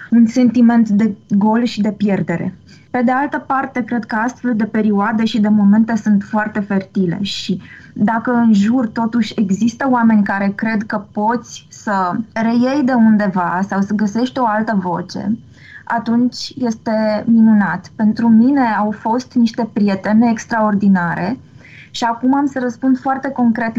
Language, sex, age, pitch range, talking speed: Romanian, female, 20-39, 205-245 Hz, 150 wpm